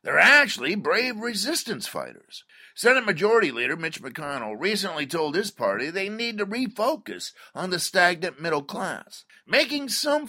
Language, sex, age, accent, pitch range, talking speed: English, male, 50-69, American, 175-245 Hz, 145 wpm